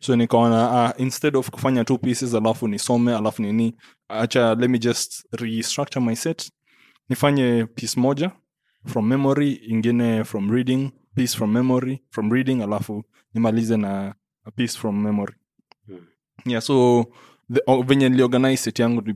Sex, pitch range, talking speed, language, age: male, 105-130 Hz, 130 wpm, English, 20-39